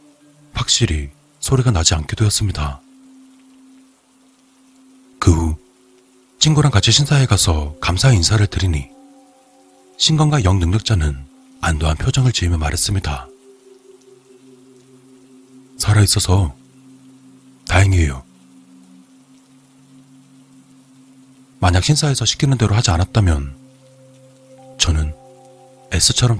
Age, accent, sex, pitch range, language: 40-59, native, male, 95-145 Hz, Korean